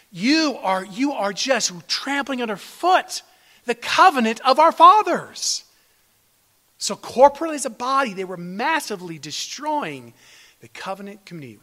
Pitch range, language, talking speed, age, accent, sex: 155-225 Hz, English, 125 wpm, 40-59, American, male